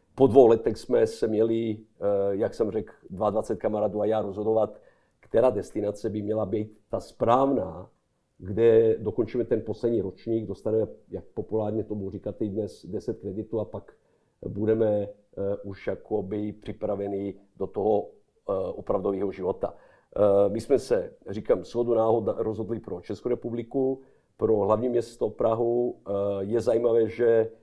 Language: Czech